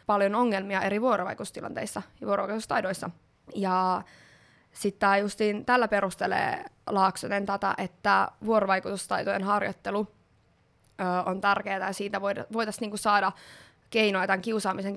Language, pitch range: Finnish, 195-230 Hz